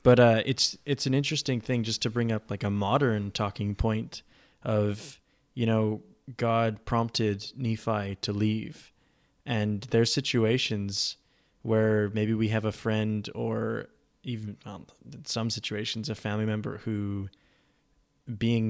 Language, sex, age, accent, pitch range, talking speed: English, male, 20-39, American, 105-120 Hz, 145 wpm